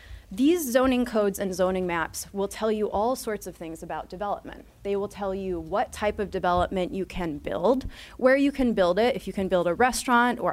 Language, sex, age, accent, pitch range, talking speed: English, female, 20-39, American, 175-220 Hz, 215 wpm